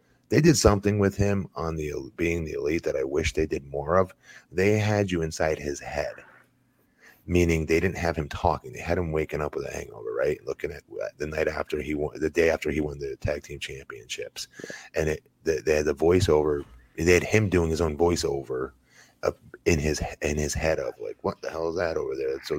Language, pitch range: English, 80-110 Hz